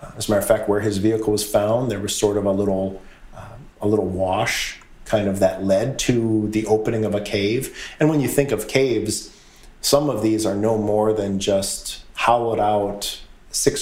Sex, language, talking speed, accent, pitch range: male, English, 205 wpm, American, 95-110 Hz